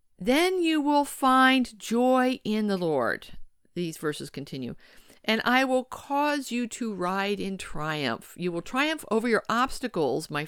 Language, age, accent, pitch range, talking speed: English, 50-69, American, 165-225 Hz, 155 wpm